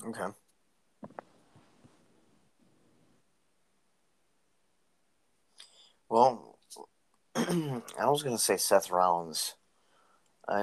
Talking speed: 55 wpm